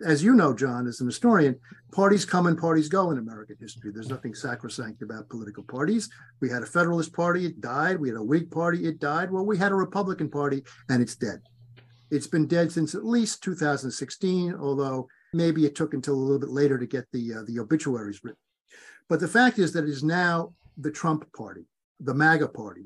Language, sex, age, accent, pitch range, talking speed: English, male, 50-69, American, 130-185 Hz, 215 wpm